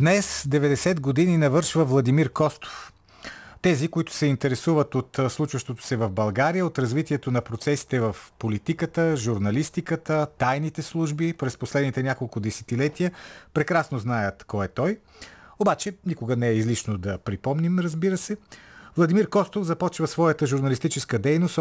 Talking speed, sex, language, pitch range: 135 wpm, male, Bulgarian, 115-160 Hz